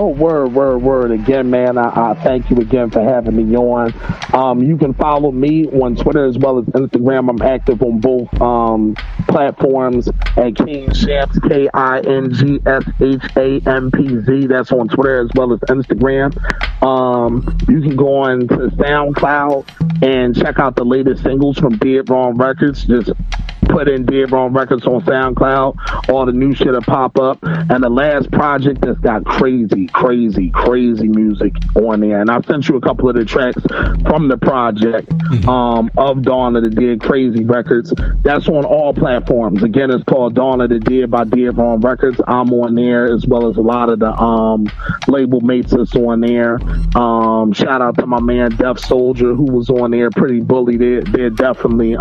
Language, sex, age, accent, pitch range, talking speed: English, male, 40-59, American, 120-135 Hz, 185 wpm